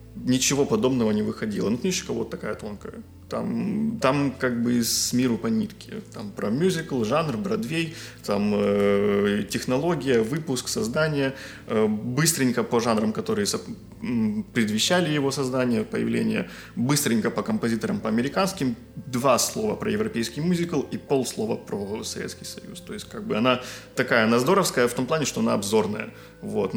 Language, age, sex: Russian, 20-39, male